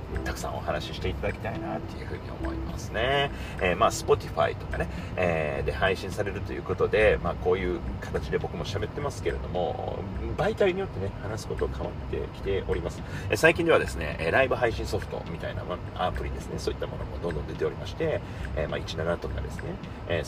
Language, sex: Japanese, male